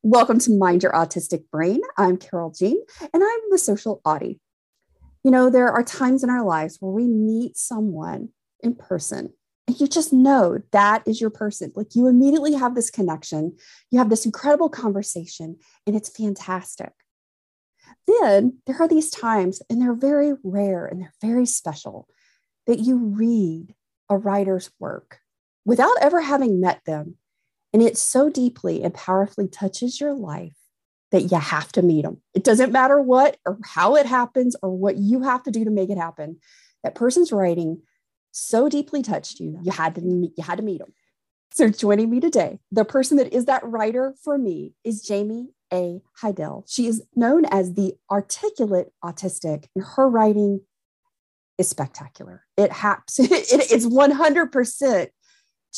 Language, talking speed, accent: English, 170 wpm, American